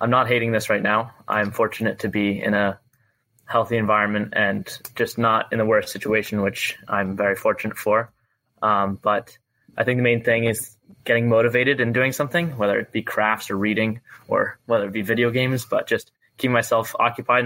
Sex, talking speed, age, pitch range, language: male, 195 wpm, 20-39, 105-120 Hz, English